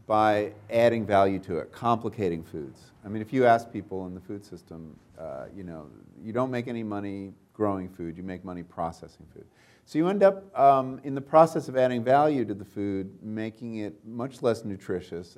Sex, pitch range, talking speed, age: male, 90-115 Hz, 200 wpm, 50-69